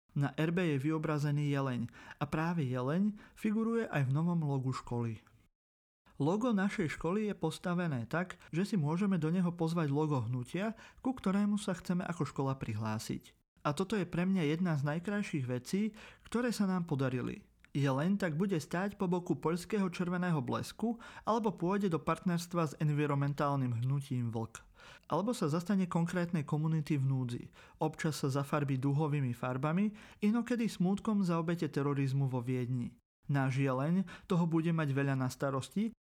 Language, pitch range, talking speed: Slovak, 135-185 Hz, 150 wpm